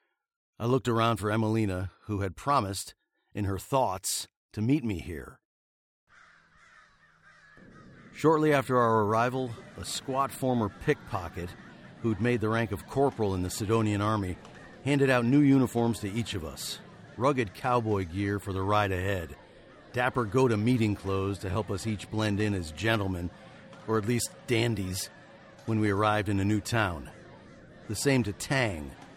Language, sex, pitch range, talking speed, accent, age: English, male, 100-125 Hz, 150 wpm, American, 50-69